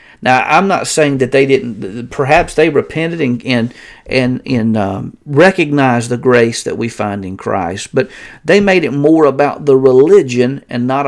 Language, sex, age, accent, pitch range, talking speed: English, male, 40-59, American, 115-155 Hz, 180 wpm